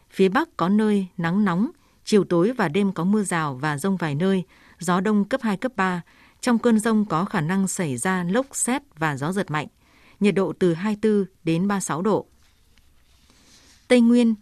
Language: Vietnamese